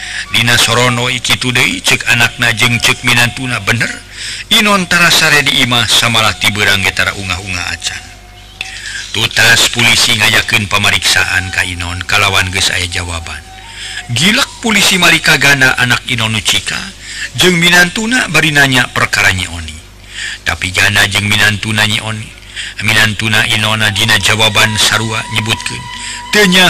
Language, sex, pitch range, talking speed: Indonesian, male, 95-130 Hz, 125 wpm